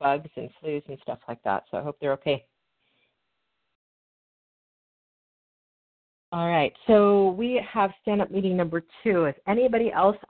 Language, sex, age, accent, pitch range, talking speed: English, female, 40-59, American, 150-190 Hz, 140 wpm